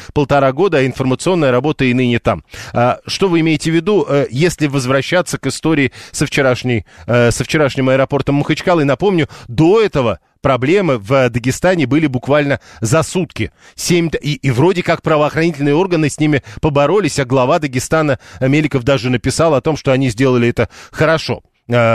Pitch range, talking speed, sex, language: 125-155 Hz, 150 wpm, male, Russian